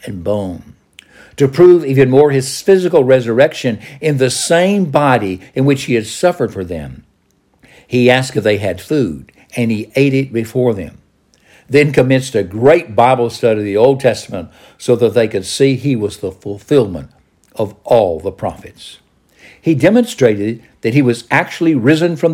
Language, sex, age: English, male, 60-79